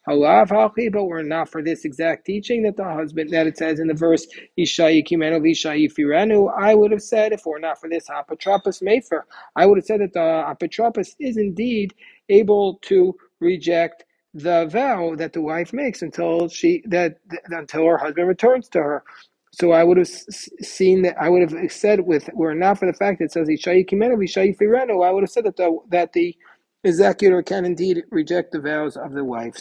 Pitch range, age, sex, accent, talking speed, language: 160-200 Hz, 40-59, male, American, 190 wpm, English